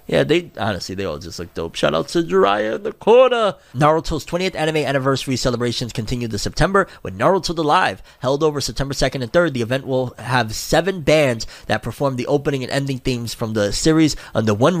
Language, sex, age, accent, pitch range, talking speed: English, male, 30-49, American, 120-155 Hz, 205 wpm